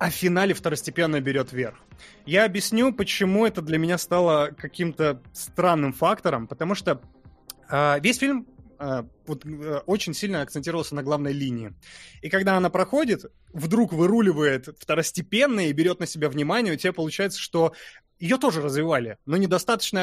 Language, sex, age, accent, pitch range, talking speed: Russian, male, 20-39, native, 145-190 Hz, 145 wpm